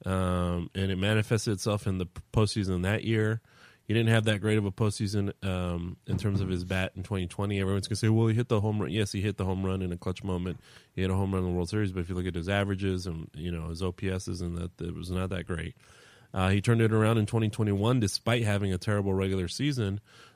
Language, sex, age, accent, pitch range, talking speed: English, male, 30-49, American, 90-105 Hz, 255 wpm